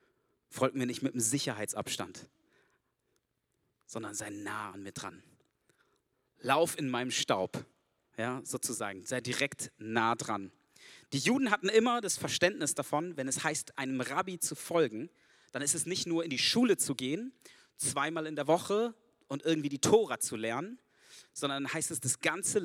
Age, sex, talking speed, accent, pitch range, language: 40-59, male, 165 wpm, German, 130-170 Hz, German